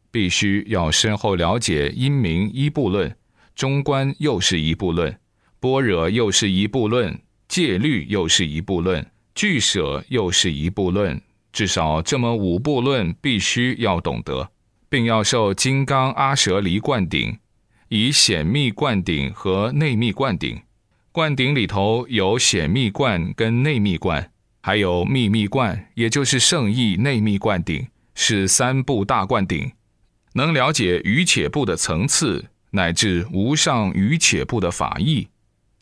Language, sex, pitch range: Chinese, male, 95-130 Hz